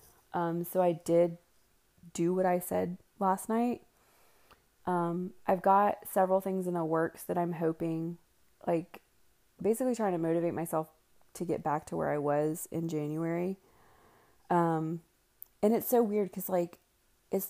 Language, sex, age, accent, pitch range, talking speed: English, female, 20-39, American, 160-180 Hz, 150 wpm